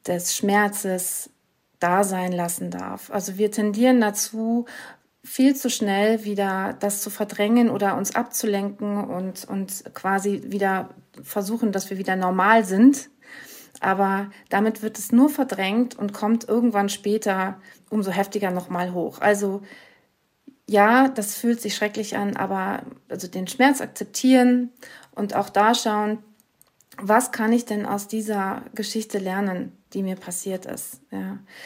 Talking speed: 135 wpm